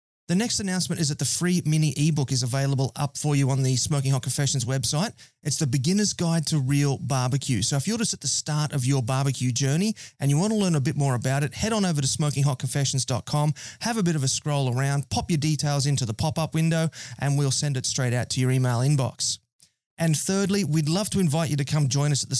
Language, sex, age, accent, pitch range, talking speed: English, male, 30-49, Australian, 135-160 Hz, 240 wpm